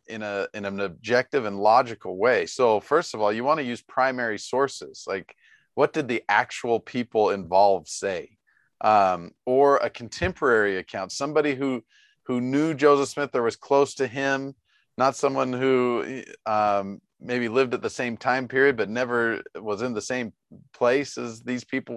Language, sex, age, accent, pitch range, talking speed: English, male, 40-59, American, 110-130 Hz, 170 wpm